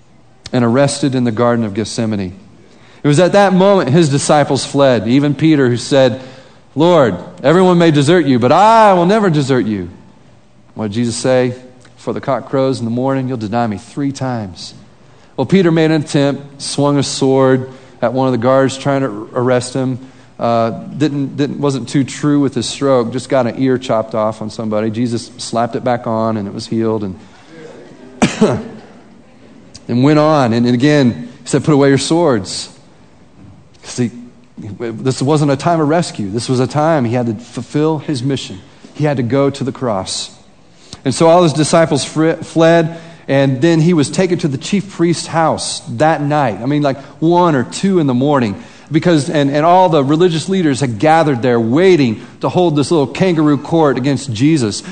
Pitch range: 125-160 Hz